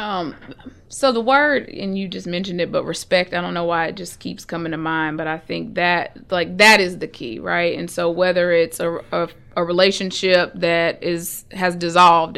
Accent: American